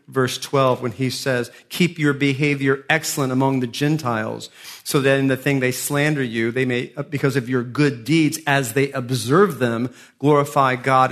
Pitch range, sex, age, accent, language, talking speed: 130-165 Hz, male, 40-59, American, English, 180 wpm